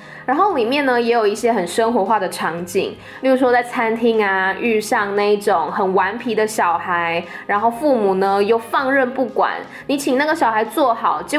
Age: 10-29